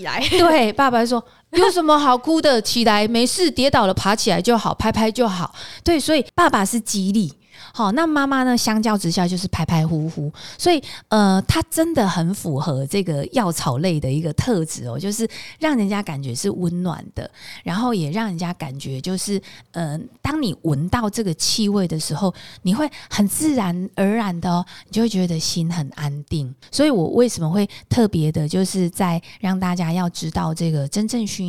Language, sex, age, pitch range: Chinese, female, 20-39, 160-215 Hz